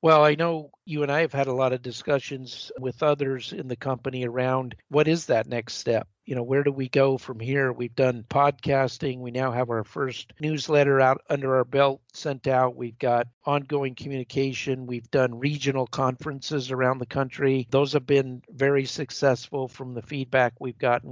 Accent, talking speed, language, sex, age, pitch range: American, 190 wpm, English, male, 50-69, 125-140 Hz